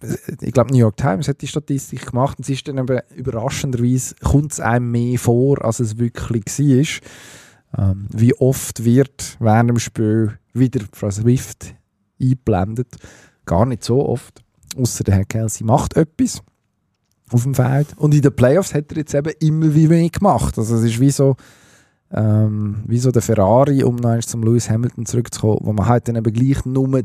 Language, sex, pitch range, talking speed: German, male, 110-130 Hz, 180 wpm